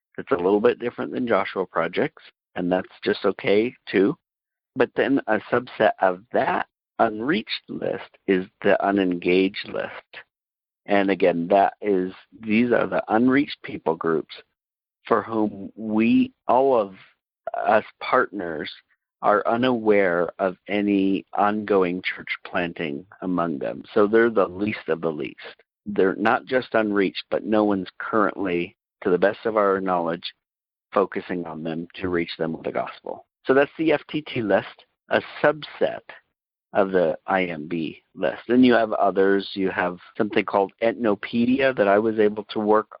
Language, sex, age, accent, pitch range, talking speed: English, male, 50-69, American, 95-115 Hz, 150 wpm